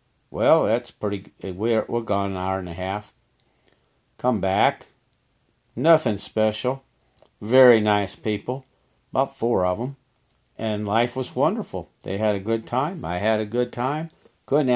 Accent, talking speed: American, 155 wpm